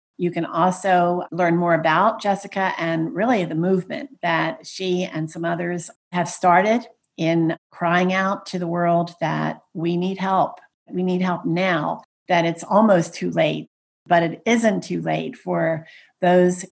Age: 50-69